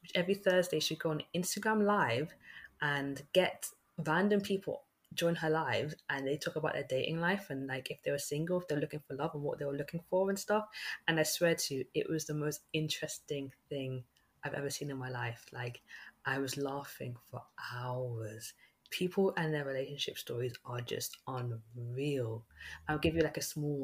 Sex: female